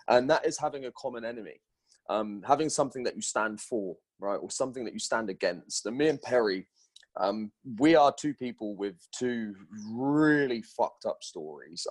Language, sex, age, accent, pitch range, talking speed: English, male, 20-39, British, 110-145 Hz, 180 wpm